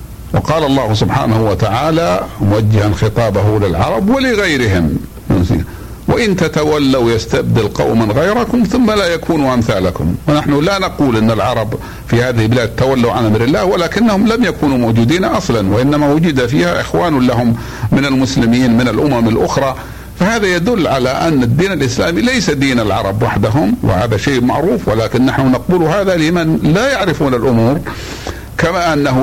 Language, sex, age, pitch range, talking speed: Arabic, male, 60-79, 110-155 Hz, 140 wpm